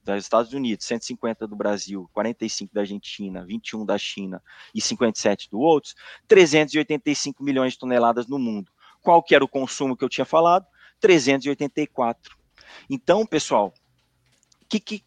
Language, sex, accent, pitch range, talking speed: Portuguese, male, Brazilian, 110-160 Hz, 145 wpm